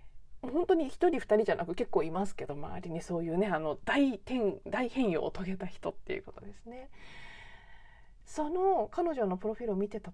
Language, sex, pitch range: Japanese, female, 180-280 Hz